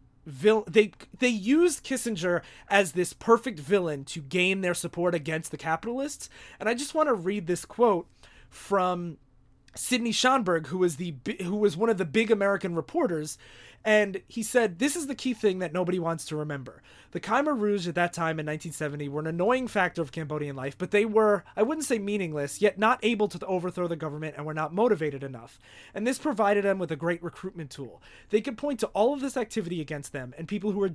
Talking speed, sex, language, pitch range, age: 205 wpm, male, English, 160-220 Hz, 30-49